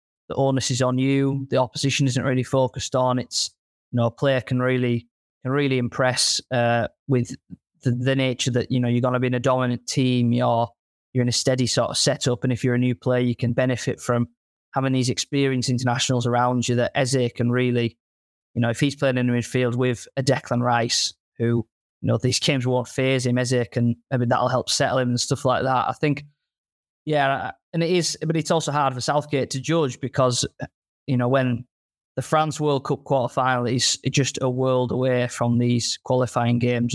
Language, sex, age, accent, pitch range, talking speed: English, male, 20-39, British, 120-135 Hz, 210 wpm